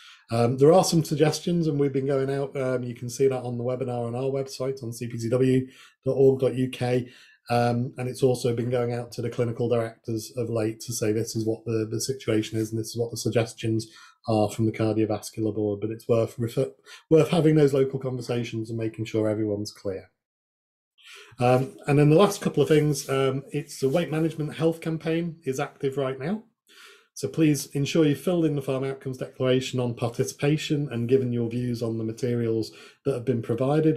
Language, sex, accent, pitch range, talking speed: English, male, British, 120-145 Hz, 200 wpm